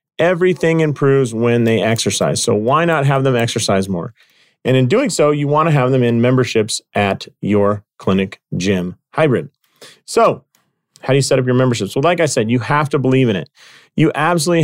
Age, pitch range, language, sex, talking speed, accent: 40-59, 125-165 Hz, English, male, 195 wpm, American